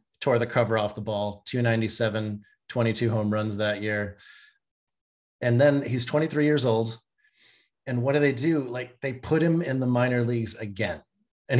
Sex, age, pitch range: male, 30-49, 110-135 Hz